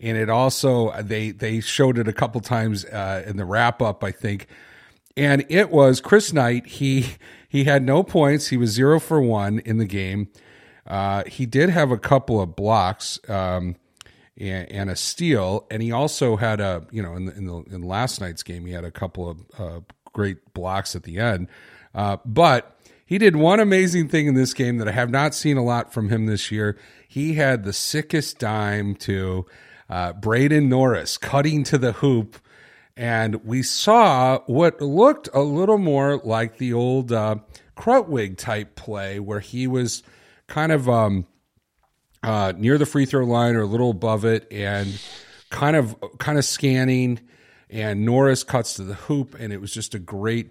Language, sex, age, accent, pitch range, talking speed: English, male, 40-59, American, 105-135 Hz, 185 wpm